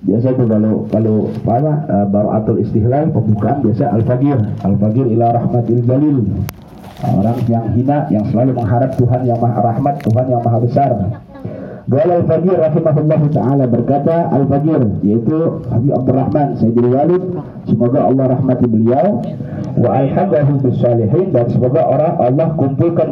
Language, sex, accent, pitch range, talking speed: Indonesian, male, native, 115-155 Hz, 130 wpm